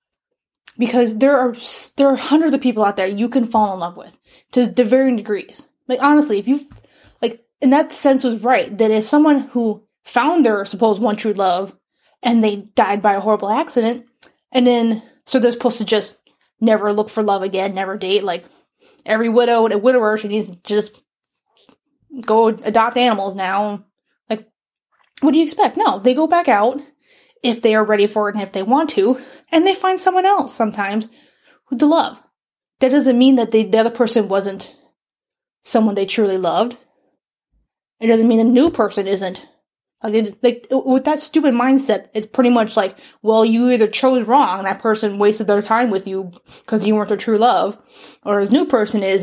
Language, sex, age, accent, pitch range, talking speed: English, female, 20-39, American, 210-260 Hz, 195 wpm